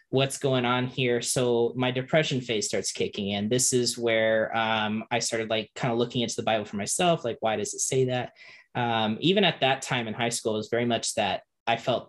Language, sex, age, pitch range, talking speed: English, male, 20-39, 110-125 Hz, 235 wpm